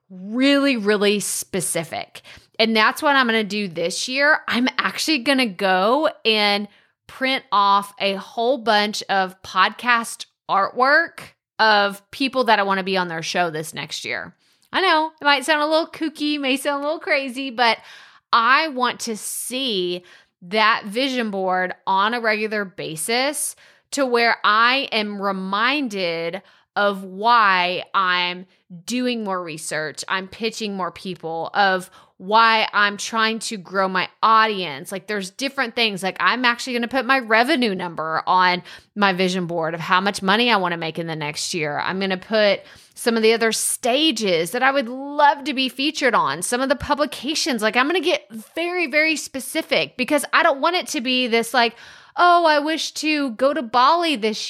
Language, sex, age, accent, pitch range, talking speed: English, female, 20-39, American, 190-270 Hz, 170 wpm